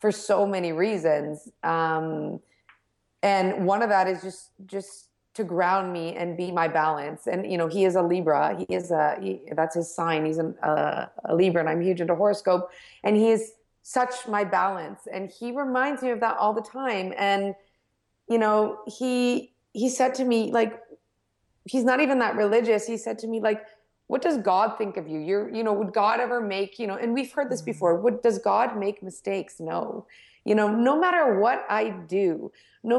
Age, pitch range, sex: 30-49, 185-235 Hz, female